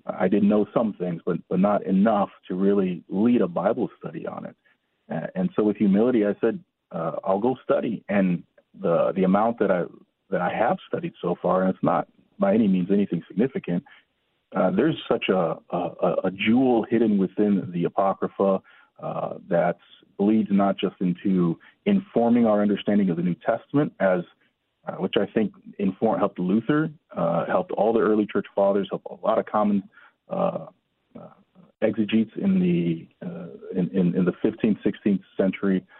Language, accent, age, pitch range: English, American, 40-59, 95-135 Hz